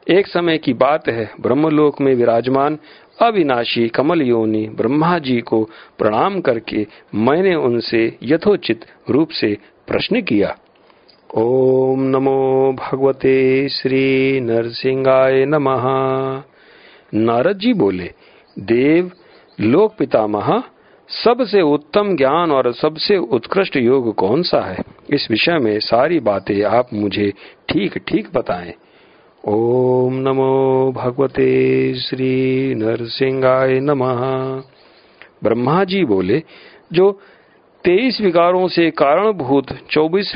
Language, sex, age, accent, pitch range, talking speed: Hindi, male, 50-69, native, 120-160 Hz, 105 wpm